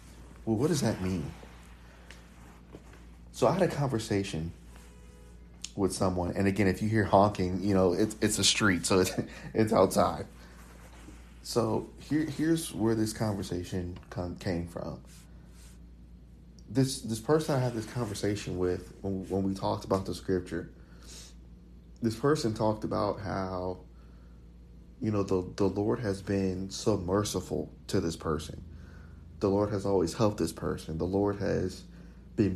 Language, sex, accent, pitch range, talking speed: English, male, American, 85-110 Hz, 145 wpm